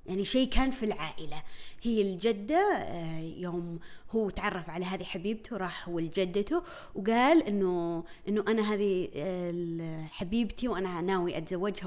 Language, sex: Arabic, female